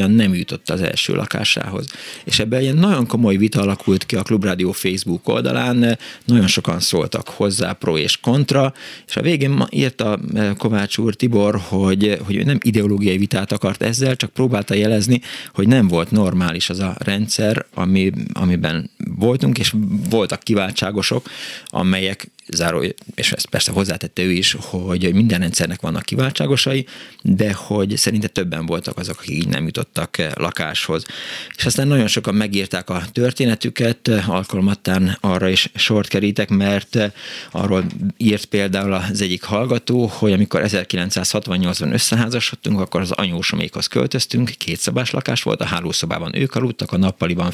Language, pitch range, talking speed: Hungarian, 95-120 Hz, 150 wpm